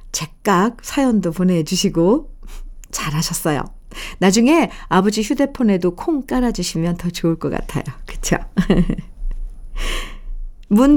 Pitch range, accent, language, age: 185-260 Hz, native, Korean, 50-69